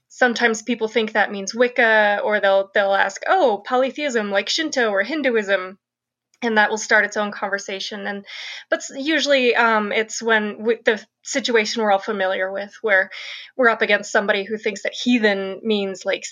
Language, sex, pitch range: English, female, 200-235 Hz